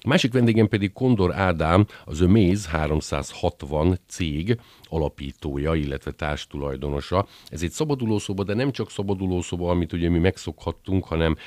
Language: Hungarian